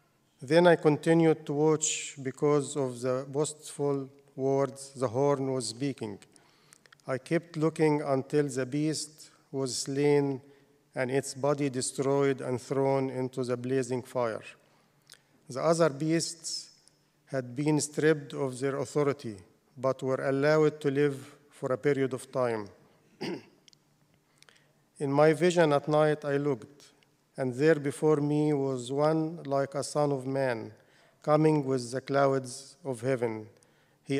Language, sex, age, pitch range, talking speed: English, male, 50-69, 130-150 Hz, 135 wpm